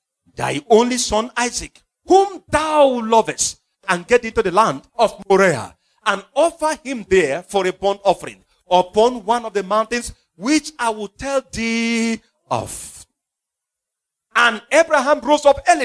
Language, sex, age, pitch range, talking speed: English, male, 50-69, 180-255 Hz, 145 wpm